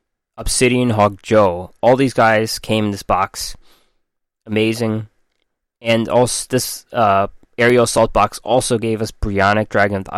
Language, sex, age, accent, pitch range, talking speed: English, male, 20-39, American, 100-125 Hz, 145 wpm